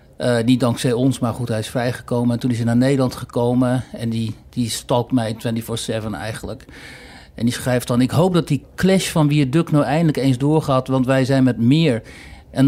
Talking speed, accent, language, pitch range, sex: 210 wpm, Dutch, Dutch, 115-145 Hz, male